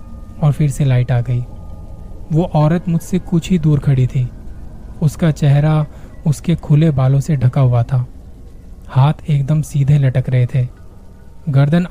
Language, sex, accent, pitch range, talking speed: Hindi, male, native, 125-165 Hz, 150 wpm